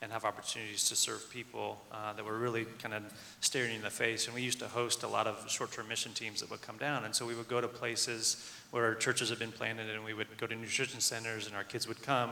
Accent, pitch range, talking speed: American, 110-125 Hz, 275 wpm